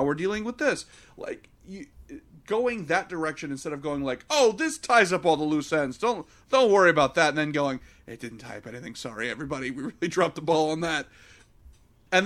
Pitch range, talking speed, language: 150-215 Hz, 210 wpm, English